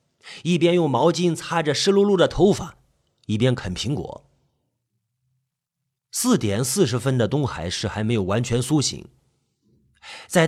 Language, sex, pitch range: Chinese, male, 115-175 Hz